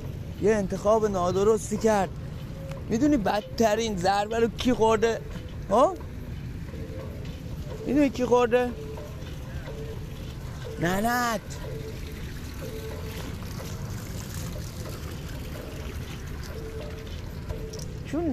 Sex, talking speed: male, 50 wpm